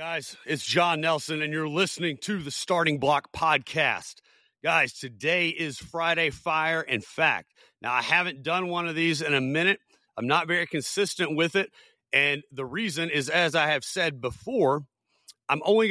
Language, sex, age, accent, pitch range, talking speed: English, male, 40-59, American, 140-175 Hz, 175 wpm